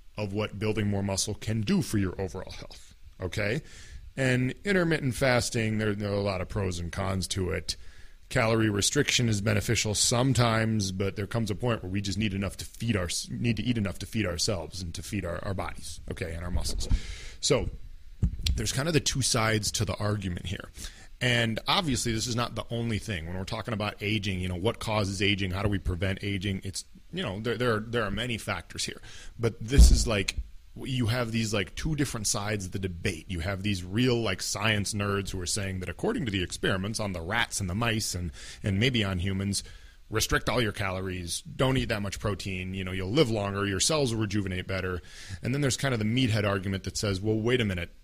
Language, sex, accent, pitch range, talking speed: English, male, American, 95-115 Hz, 225 wpm